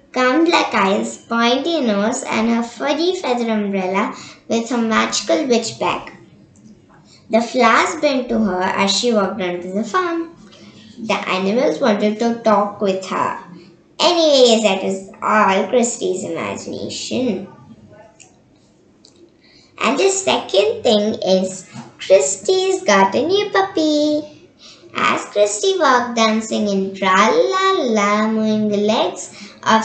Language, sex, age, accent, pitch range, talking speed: Telugu, male, 20-39, native, 205-280 Hz, 120 wpm